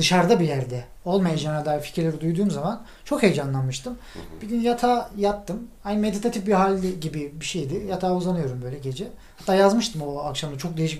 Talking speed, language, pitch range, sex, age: 170 wpm, Turkish, 140-210 Hz, male, 40-59